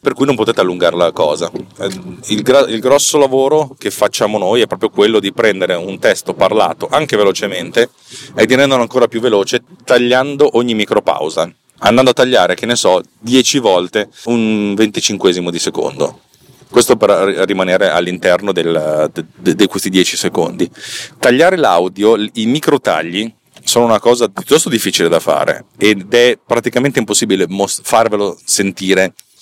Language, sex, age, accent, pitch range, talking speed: Italian, male, 30-49, native, 90-115 Hz, 155 wpm